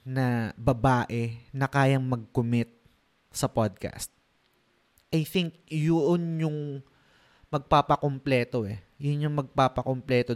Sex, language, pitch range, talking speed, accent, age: male, Filipino, 115-145 Hz, 95 wpm, native, 20-39